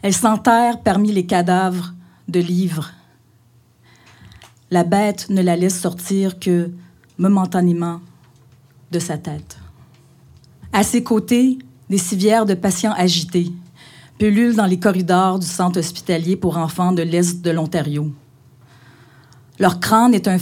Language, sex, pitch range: French, female, 130-185 Hz